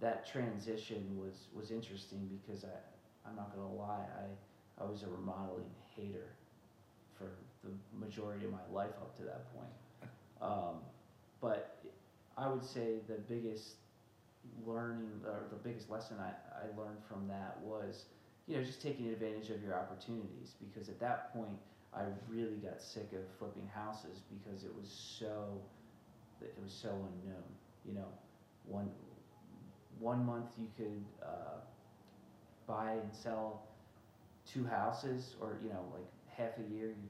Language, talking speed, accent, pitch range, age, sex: English, 150 wpm, American, 100-115 Hz, 30-49, male